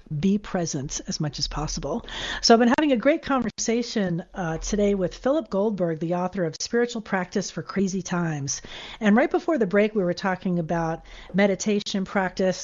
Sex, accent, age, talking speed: female, American, 40-59, 175 wpm